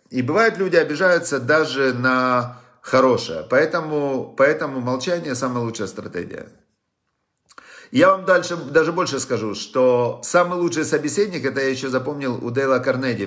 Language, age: Russian, 50-69